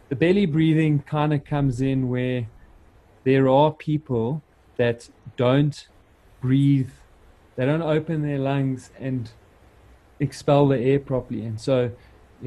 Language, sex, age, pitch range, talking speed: English, male, 30-49, 115-135 Hz, 130 wpm